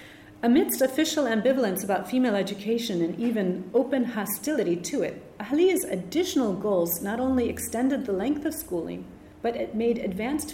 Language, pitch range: French, 190-240 Hz